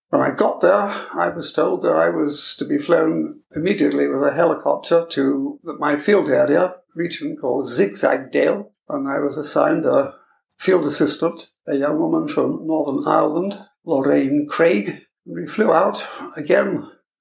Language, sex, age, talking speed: English, male, 60-79, 155 wpm